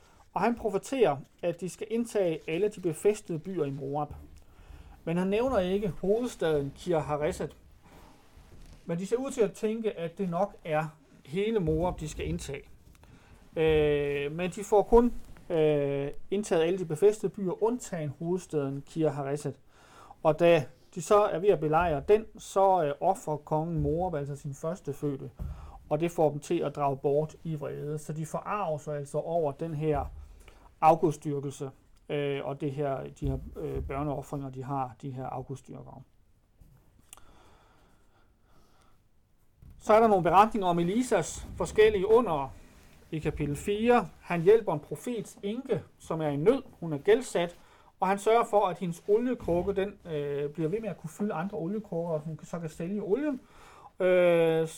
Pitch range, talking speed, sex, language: 140-195 Hz, 160 wpm, male, Danish